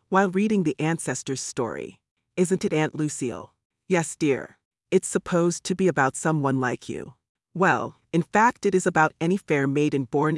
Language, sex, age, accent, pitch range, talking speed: English, female, 30-49, American, 135-180 Hz, 170 wpm